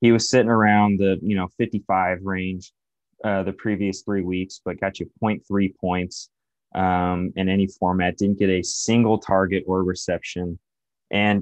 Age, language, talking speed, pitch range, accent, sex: 20-39, English, 165 wpm, 90-105 Hz, American, male